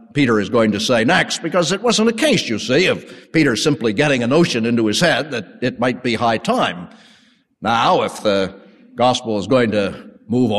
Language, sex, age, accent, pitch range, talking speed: English, male, 50-69, American, 110-165 Hz, 205 wpm